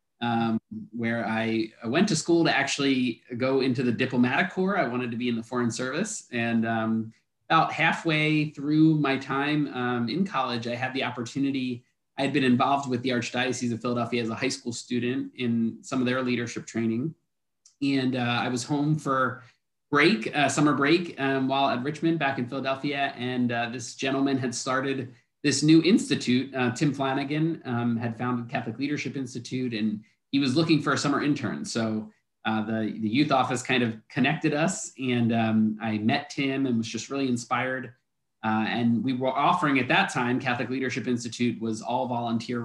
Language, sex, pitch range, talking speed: English, male, 115-140 Hz, 185 wpm